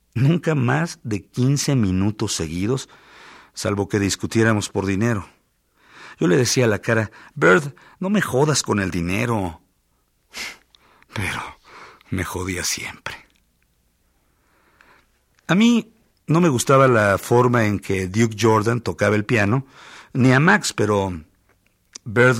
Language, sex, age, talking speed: Spanish, male, 50-69, 125 wpm